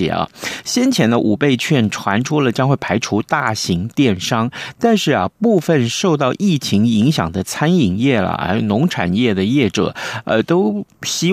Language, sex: Chinese, male